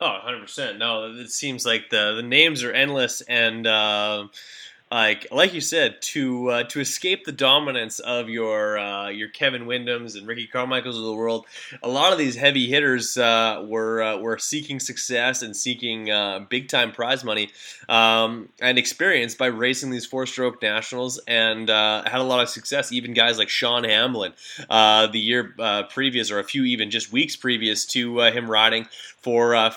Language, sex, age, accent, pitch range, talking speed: English, male, 20-39, American, 105-125 Hz, 185 wpm